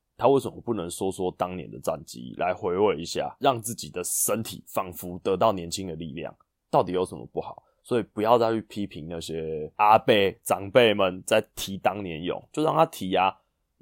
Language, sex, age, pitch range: Chinese, male, 20-39, 90-115 Hz